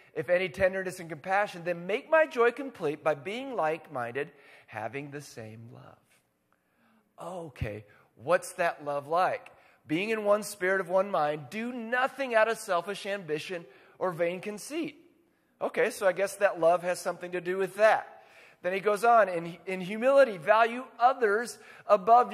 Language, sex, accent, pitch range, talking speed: English, male, American, 150-225 Hz, 160 wpm